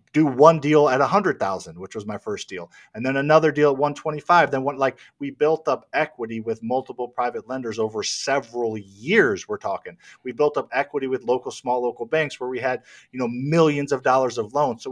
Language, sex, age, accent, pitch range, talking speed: English, male, 40-59, American, 115-150 Hz, 225 wpm